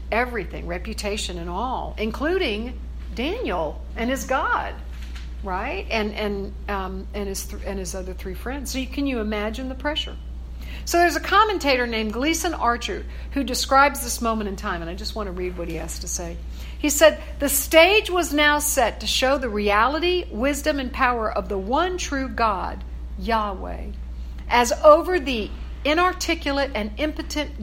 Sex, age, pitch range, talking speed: female, 60-79, 205-290 Hz, 170 wpm